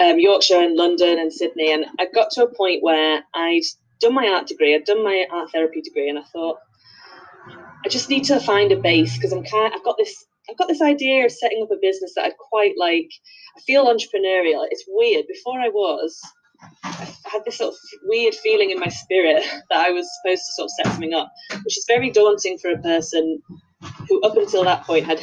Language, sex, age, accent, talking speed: English, female, 20-39, British, 230 wpm